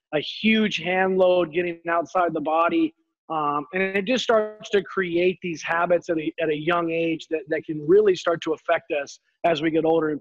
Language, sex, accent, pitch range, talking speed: English, male, American, 155-180 Hz, 205 wpm